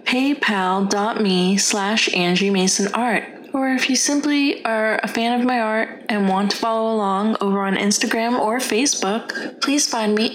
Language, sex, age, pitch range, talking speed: English, female, 20-39, 195-245 Hz, 150 wpm